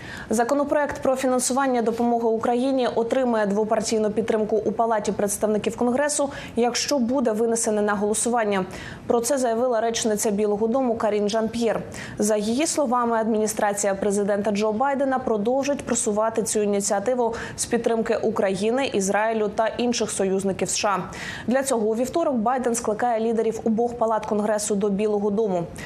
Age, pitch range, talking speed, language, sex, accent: 20-39, 210-245 Hz, 135 wpm, Ukrainian, female, native